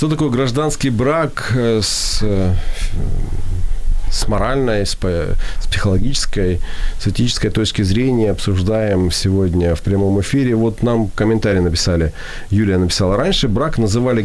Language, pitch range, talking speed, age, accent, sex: Ukrainian, 90-115 Hz, 115 wpm, 40-59, native, male